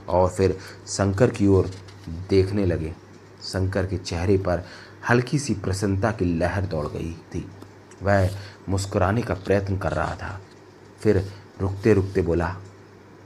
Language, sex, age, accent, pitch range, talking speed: Hindi, male, 30-49, native, 95-105 Hz, 135 wpm